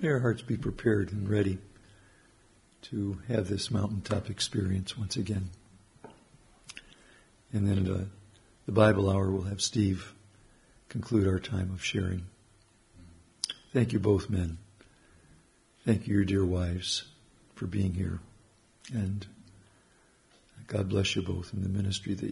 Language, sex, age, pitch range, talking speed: English, male, 60-79, 100-115 Hz, 130 wpm